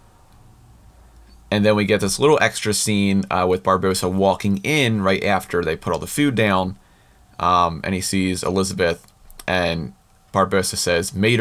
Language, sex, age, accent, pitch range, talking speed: English, male, 30-49, American, 95-115 Hz, 160 wpm